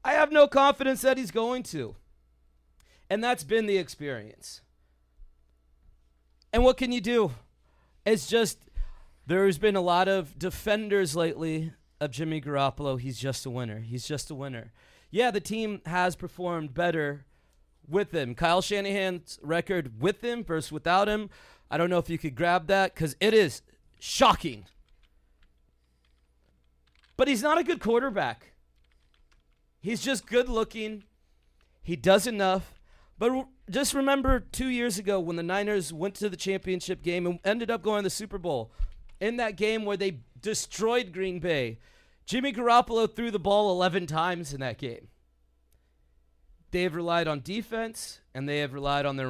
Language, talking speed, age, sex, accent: English, 160 wpm, 30-49, male, American